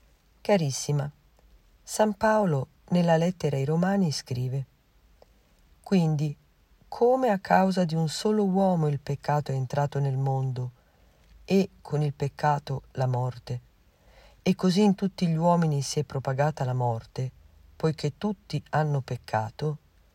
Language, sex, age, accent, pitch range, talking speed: Italian, female, 50-69, native, 125-180 Hz, 130 wpm